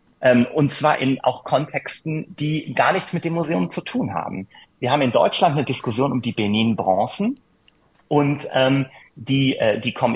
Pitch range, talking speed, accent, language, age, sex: 115-155 Hz, 170 wpm, German, German, 30-49, male